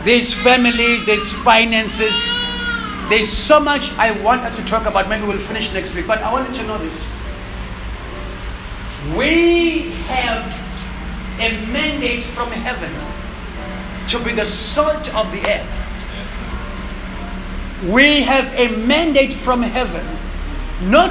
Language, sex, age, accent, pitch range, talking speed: English, male, 40-59, South African, 210-280 Hz, 125 wpm